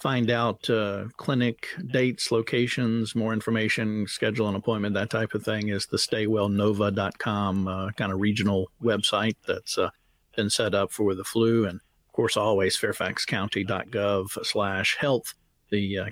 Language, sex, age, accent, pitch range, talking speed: English, male, 50-69, American, 100-125 Hz, 145 wpm